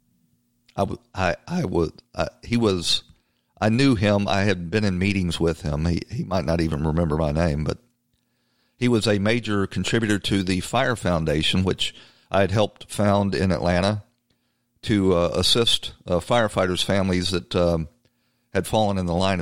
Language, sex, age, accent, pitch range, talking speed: English, male, 50-69, American, 90-120 Hz, 175 wpm